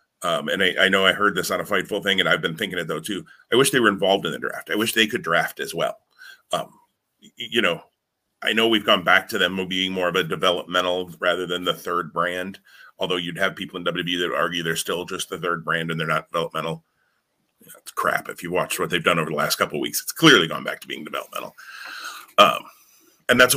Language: English